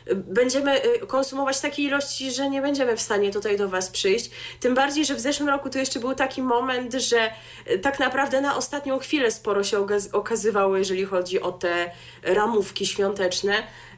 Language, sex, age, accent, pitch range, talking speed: Polish, female, 20-39, native, 200-280 Hz, 165 wpm